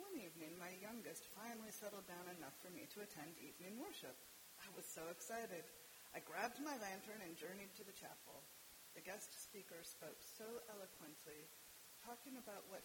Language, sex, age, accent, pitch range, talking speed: English, female, 30-49, American, 185-235 Hz, 170 wpm